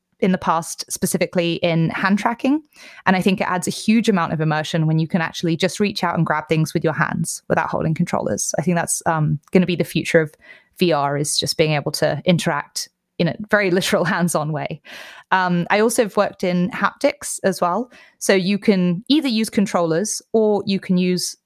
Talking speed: 205 wpm